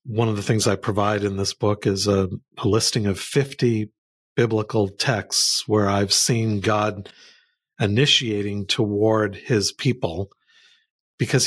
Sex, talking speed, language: male, 135 wpm, English